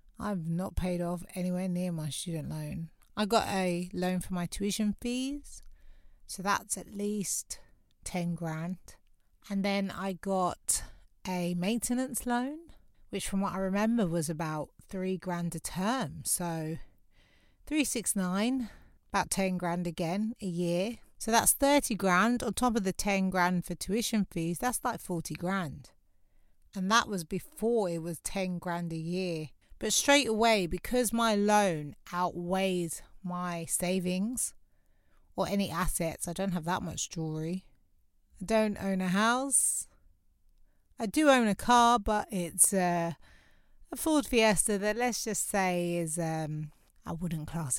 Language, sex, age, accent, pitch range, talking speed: English, female, 30-49, British, 170-215 Hz, 150 wpm